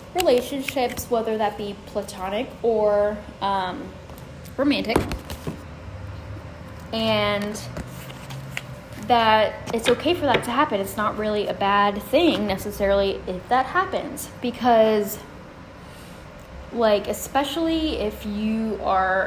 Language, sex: English, female